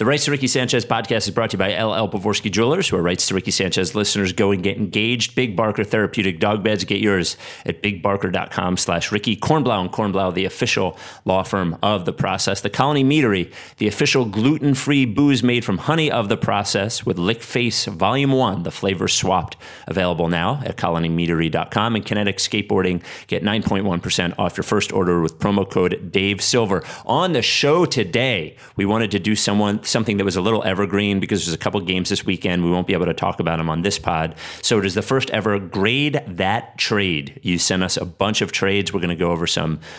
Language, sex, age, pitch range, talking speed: English, male, 30-49, 90-110 Hz, 210 wpm